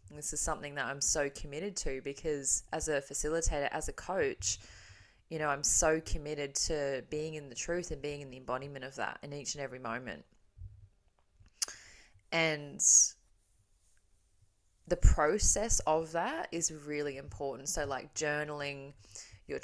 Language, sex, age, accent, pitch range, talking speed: English, female, 20-39, Australian, 135-160 Hz, 150 wpm